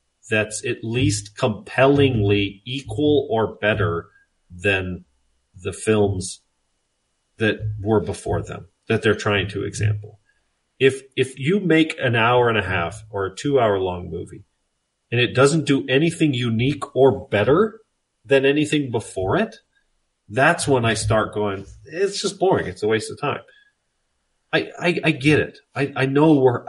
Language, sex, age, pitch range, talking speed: English, male, 40-59, 105-145 Hz, 155 wpm